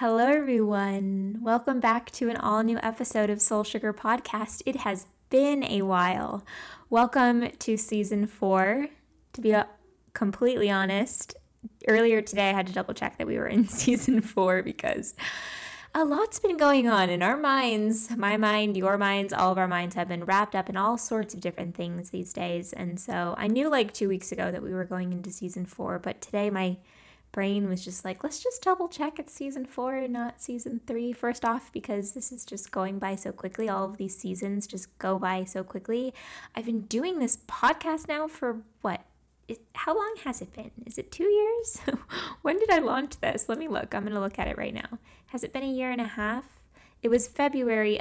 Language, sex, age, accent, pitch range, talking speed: English, female, 10-29, American, 195-250 Hz, 205 wpm